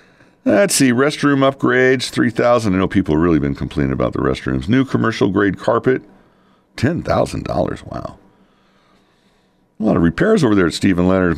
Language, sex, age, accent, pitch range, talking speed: English, male, 50-69, American, 100-155 Hz, 155 wpm